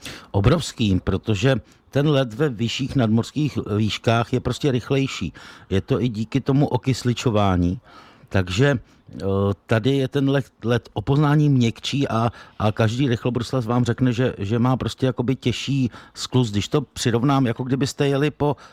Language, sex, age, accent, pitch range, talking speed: Czech, male, 50-69, native, 100-125 Hz, 135 wpm